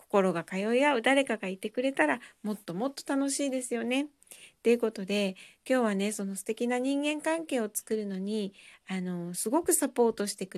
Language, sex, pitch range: Japanese, female, 185-270 Hz